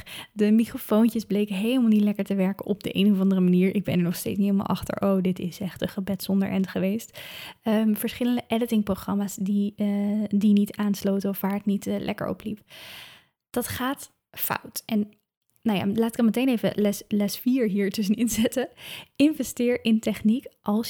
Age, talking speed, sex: 10-29, 195 wpm, female